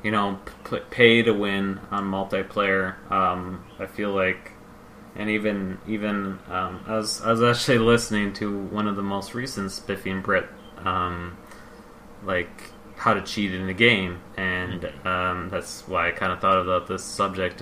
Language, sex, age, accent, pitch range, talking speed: English, male, 20-39, American, 95-110 Hz, 165 wpm